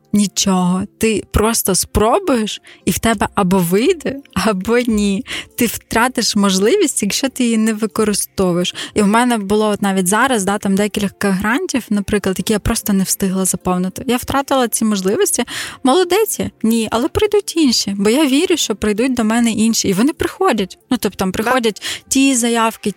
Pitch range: 190-225 Hz